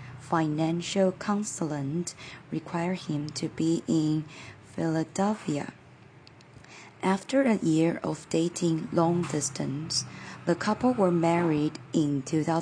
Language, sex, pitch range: Chinese, female, 155-185 Hz